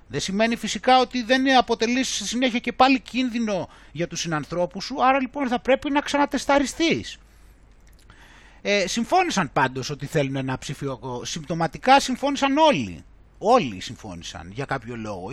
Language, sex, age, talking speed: Greek, male, 30-49, 135 wpm